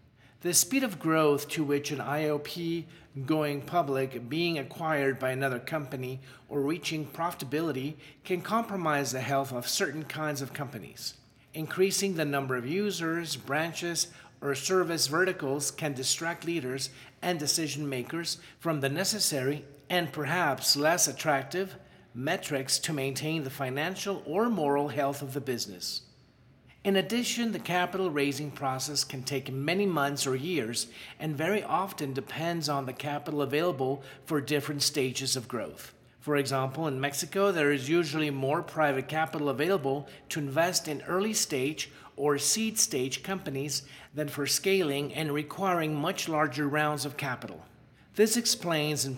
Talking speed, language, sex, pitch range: 145 wpm, English, male, 135-165 Hz